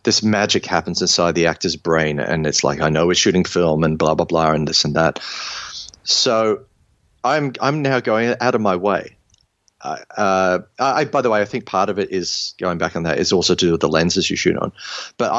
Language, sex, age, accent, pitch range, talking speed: English, male, 30-49, Australian, 85-115 Hz, 225 wpm